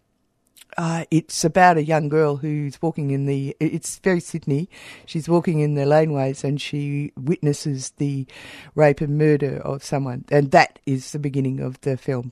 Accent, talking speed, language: Australian, 170 wpm, English